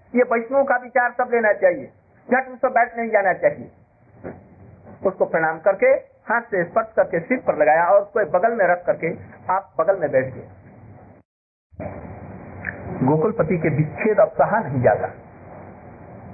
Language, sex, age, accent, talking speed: Hindi, male, 50-69, native, 145 wpm